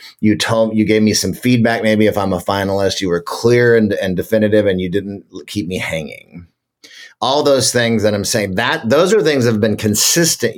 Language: English